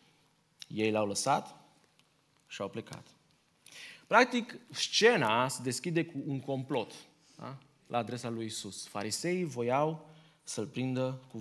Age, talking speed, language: 20-39, 115 wpm, Romanian